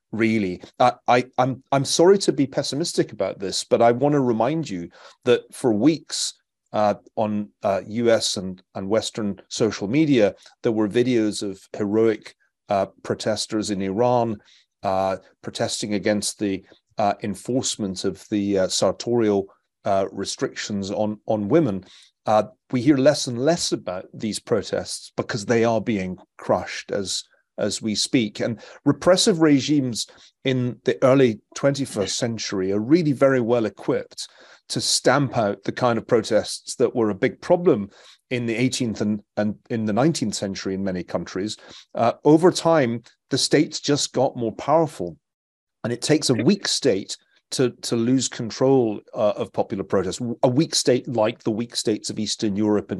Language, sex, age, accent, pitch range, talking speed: English, male, 40-59, British, 105-130 Hz, 160 wpm